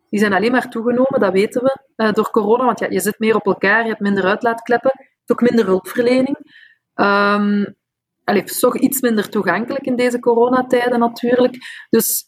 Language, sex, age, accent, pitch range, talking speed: Dutch, female, 30-49, Dutch, 200-250 Hz, 175 wpm